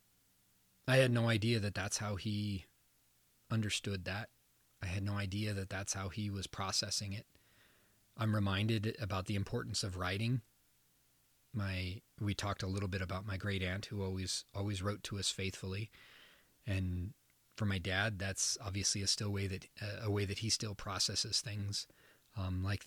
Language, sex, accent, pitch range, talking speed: English, male, American, 95-115 Hz, 170 wpm